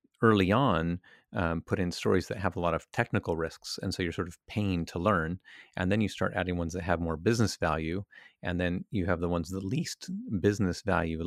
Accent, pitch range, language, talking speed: American, 85-100 Hz, English, 225 wpm